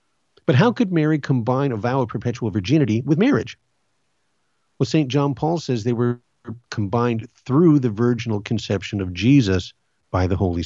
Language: English